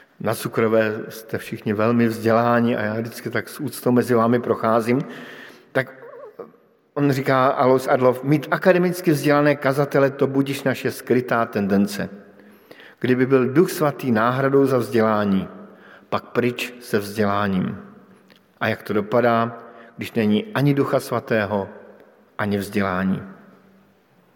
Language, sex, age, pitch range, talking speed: Slovak, male, 50-69, 115-145 Hz, 125 wpm